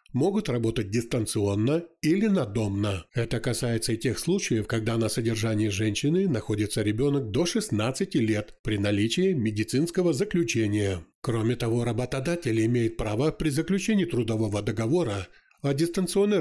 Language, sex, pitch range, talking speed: Ukrainian, male, 110-160 Hz, 125 wpm